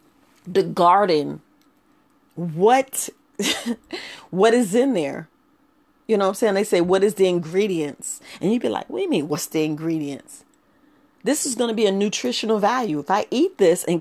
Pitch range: 195-295 Hz